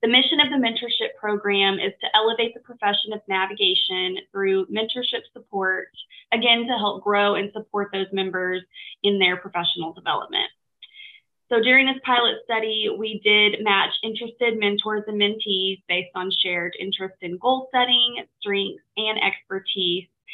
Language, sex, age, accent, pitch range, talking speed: English, female, 20-39, American, 195-235 Hz, 150 wpm